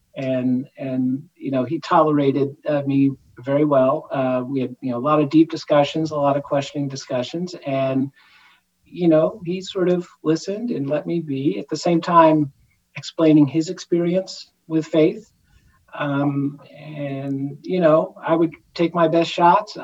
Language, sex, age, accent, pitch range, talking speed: English, male, 50-69, American, 135-165 Hz, 165 wpm